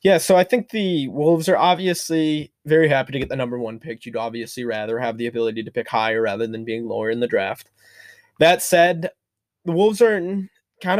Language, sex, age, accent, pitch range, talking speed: English, male, 20-39, American, 115-150 Hz, 215 wpm